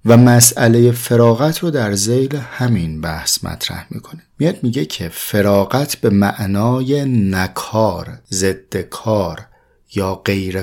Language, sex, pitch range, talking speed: Persian, male, 95-125 Hz, 120 wpm